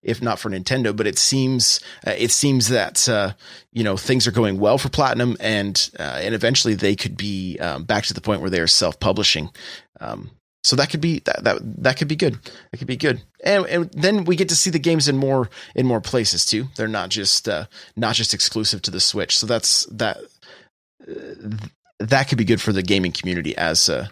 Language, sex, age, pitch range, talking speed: English, male, 30-49, 110-180 Hz, 225 wpm